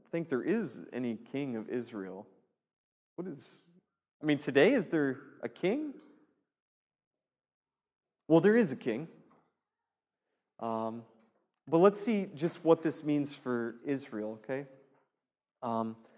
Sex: male